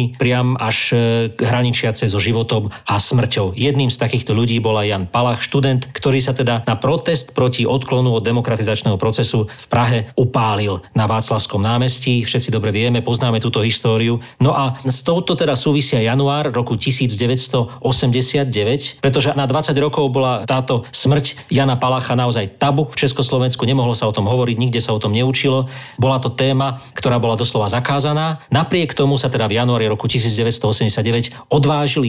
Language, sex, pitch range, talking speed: Slovak, male, 115-135 Hz, 160 wpm